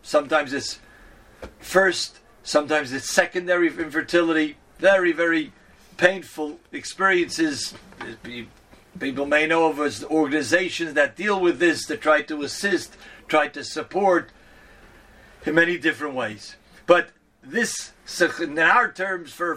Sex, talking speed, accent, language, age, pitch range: male, 115 wpm, Swedish, English, 50-69, 160-195 Hz